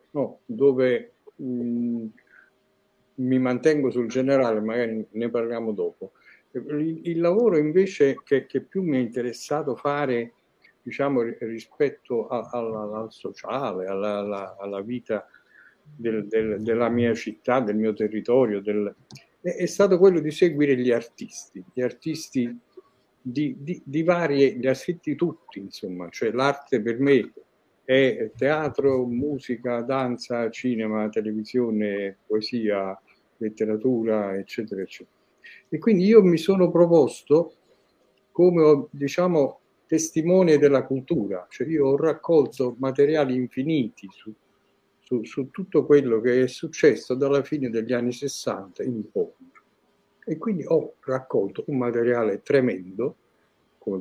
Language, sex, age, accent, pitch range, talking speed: Italian, male, 60-79, native, 115-155 Hz, 125 wpm